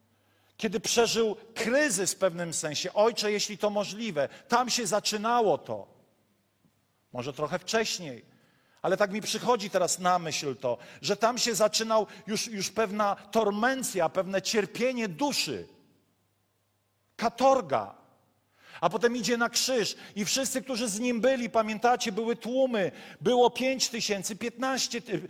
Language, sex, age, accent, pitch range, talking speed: Polish, male, 50-69, native, 180-235 Hz, 130 wpm